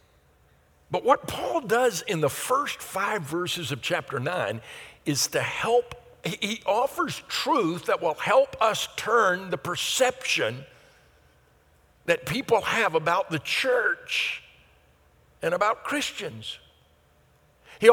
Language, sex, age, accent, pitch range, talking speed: English, male, 60-79, American, 155-235 Hz, 115 wpm